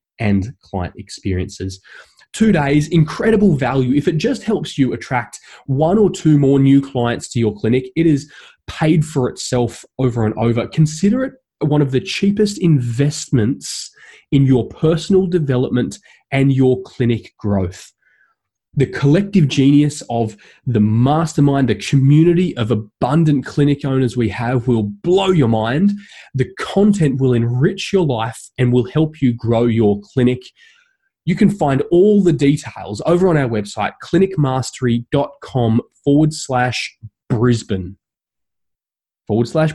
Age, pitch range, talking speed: 20-39, 115-160 Hz, 140 wpm